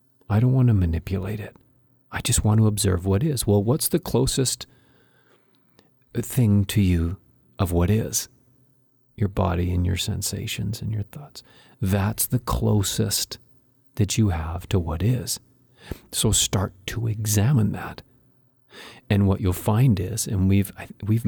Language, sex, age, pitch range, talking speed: English, male, 40-59, 100-125 Hz, 150 wpm